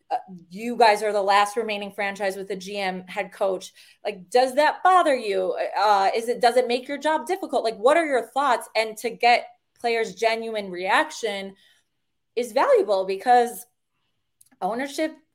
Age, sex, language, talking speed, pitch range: 20-39, female, English, 160 wpm, 195-250 Hz